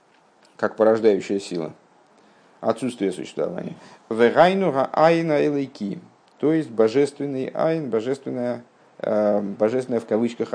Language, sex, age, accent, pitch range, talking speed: Russian, male, 50-69, native, 105-150 Hz, 90 wpm